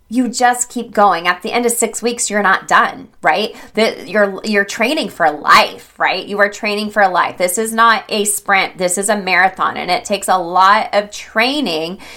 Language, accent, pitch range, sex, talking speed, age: English, American, 180-215 Hz, female, 205 wpm, 30-49